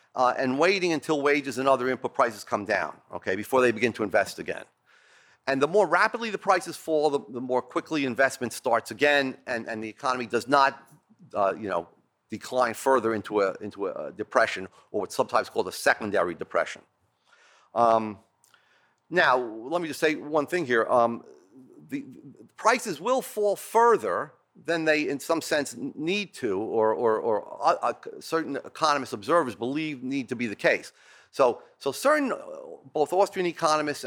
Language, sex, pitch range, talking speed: English, male, 125-175 Hz, 175 wpm